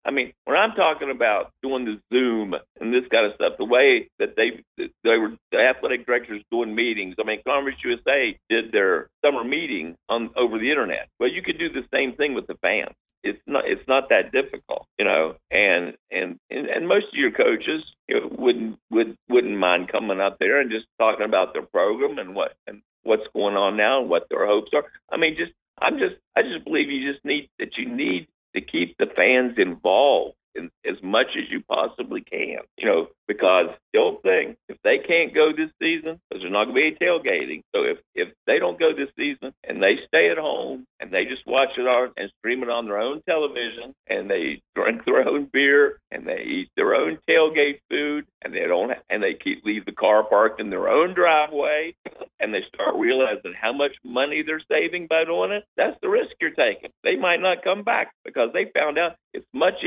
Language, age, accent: English, 50-69, American